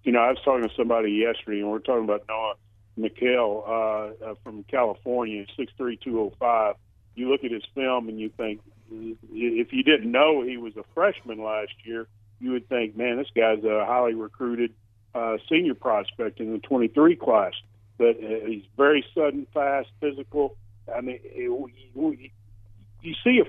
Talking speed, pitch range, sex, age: 180 wpm, 110-140 Hz, male, 40-59